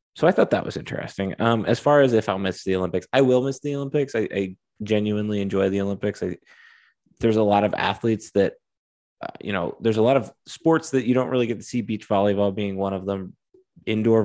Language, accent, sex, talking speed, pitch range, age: English, American, male, 230 wpm, 95-115 Hz, 20-39